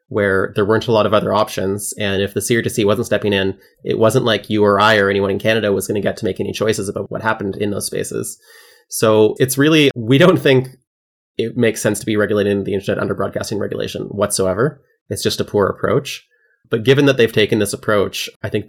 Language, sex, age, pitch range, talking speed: English, male, 30-49, 100-125 Hz, 230 wpm